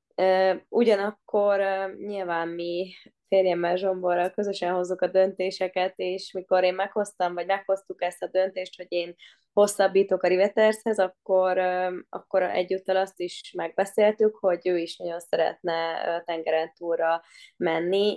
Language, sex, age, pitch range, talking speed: Hungarian, female, 20-39, 170-195 Hz, 120 wpm